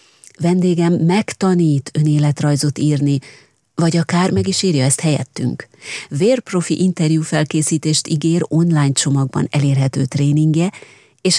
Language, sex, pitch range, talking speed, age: Hungarian, female, 145-185 Hz, 105 wpm, 30-49